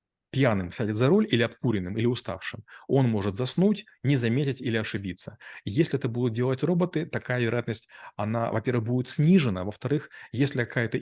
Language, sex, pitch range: Russian, male, 110-135 Hz